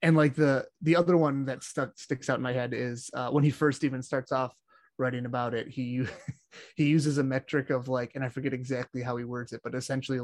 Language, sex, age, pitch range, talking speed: English, male, 20-39, 125-140 Hz, 240 wpm